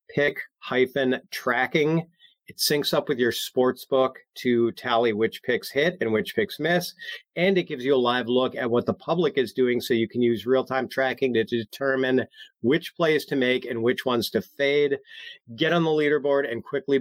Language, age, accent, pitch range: English, 40-59, American, 115-140 Hz